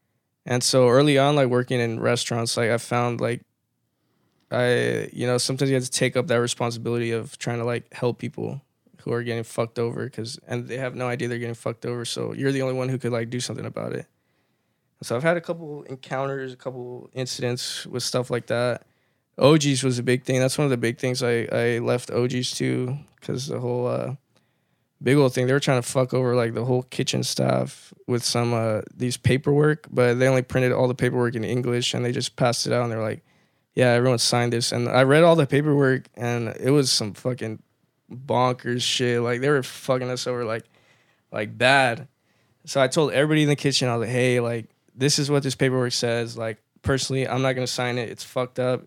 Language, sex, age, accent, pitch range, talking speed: English, male, 10-29, American, 120-130 Hz, 225 wpm